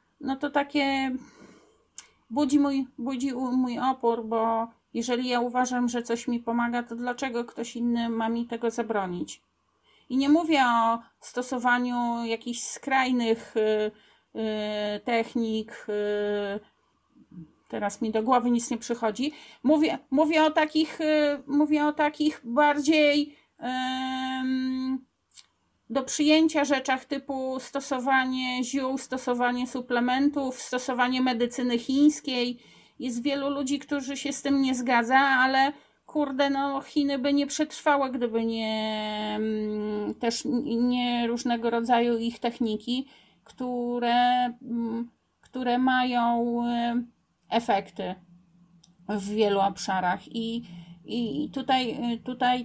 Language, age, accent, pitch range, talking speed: Polish, 40-59, native, 230-270 Hz, 100 wpm